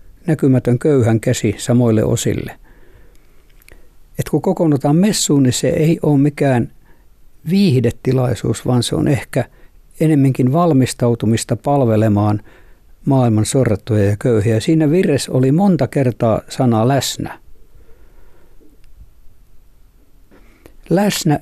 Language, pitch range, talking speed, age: Finnish, 115-150 Hz, 95 wpm, 60-79